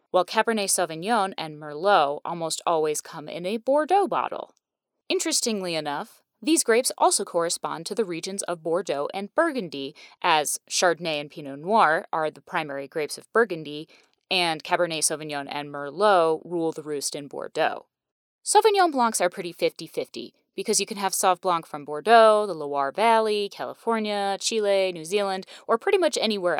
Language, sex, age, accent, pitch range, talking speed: English, female, 20-39, American, 160-230 Hz, 155 wpm